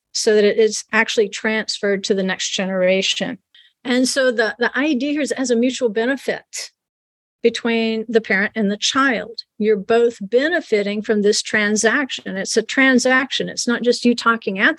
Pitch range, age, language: 215-260 Hz, 50-69, English